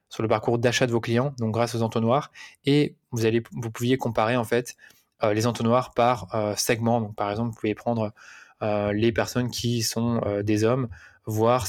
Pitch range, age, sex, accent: 110-130 Hz, 20-39, male, French